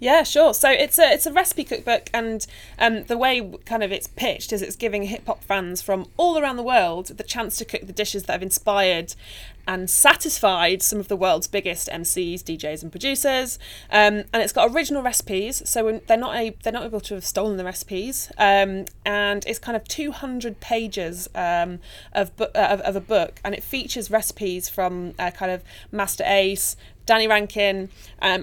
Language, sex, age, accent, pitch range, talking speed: English, female, 20-39, British, 185-230 Hz, 200 wpm